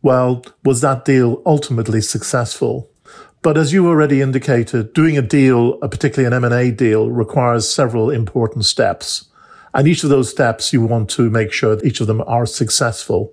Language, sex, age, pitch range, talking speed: English, male, 50-69, 115-140 Hz, 170 wpm